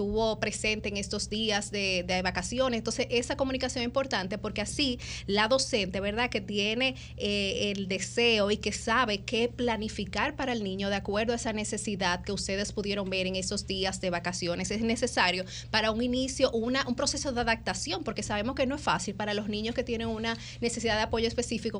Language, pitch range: Spanish, 200-245 Hz